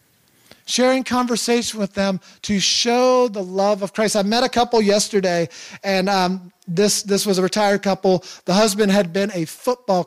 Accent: American